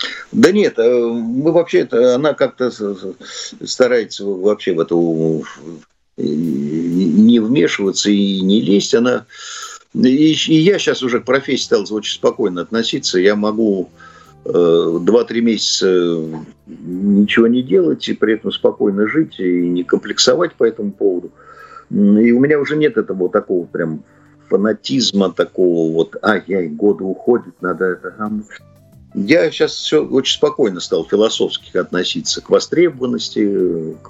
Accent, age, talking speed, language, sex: native, 50-69, 125 wpm, Russian, male